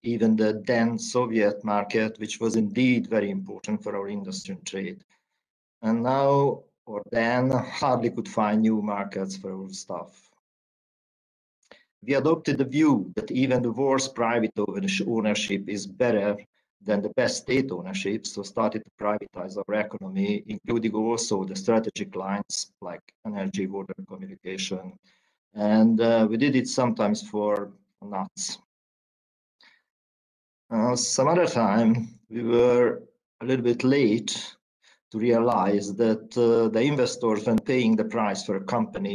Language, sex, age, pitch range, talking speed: Hungarian, male, 50-69, 105-140 Hz, 140 wpm